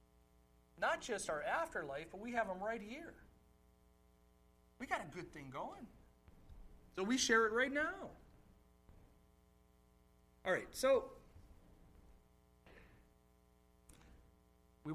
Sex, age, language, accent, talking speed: male, 30-49, English, American, 105 wpm